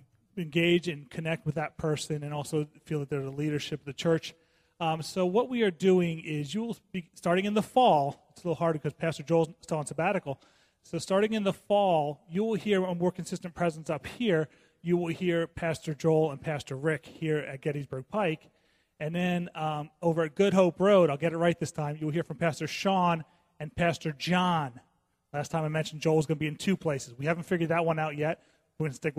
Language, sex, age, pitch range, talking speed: English, male, 30-49, 155-185 Hz, 220 wpm